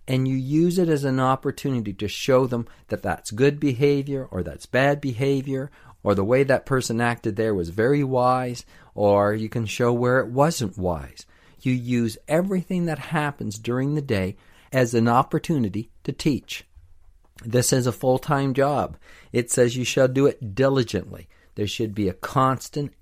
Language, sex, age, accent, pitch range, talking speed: English, male, 50-69, American, 105-145 Hz, 170 wpm